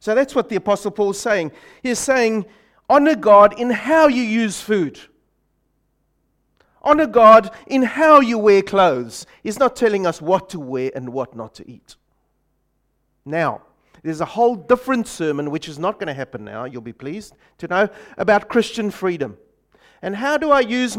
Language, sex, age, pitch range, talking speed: English, male, 40-59, 160-225 Hz, 175 wpm